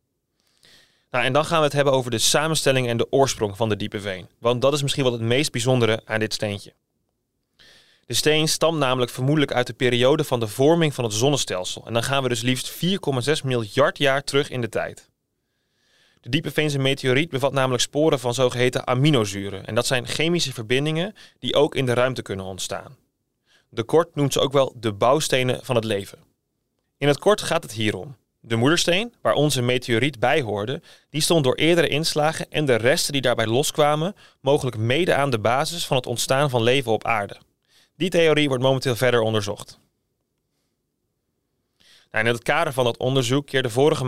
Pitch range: 120-150 Hz